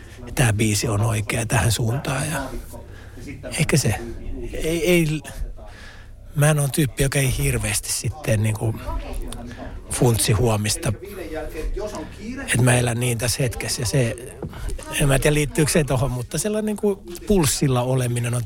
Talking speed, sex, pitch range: 125 wpm, male, 110-135 Hz